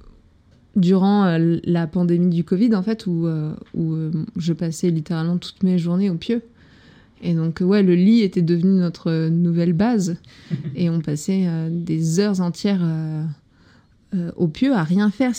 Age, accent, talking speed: 20-39, French, 170 wpm